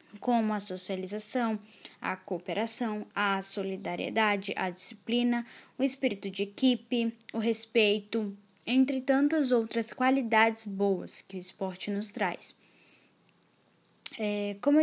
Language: Portuguese